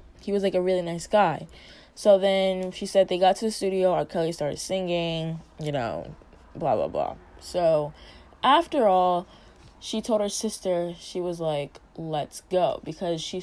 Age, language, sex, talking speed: 20-39, English, female, 175 wpm